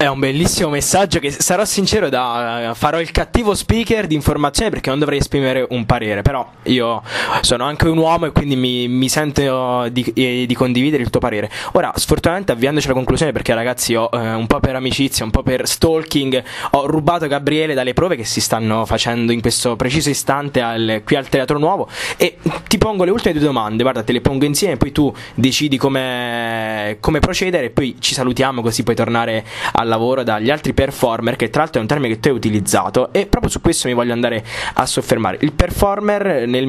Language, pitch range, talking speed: Italian, 120-150 Hz, 205 wpm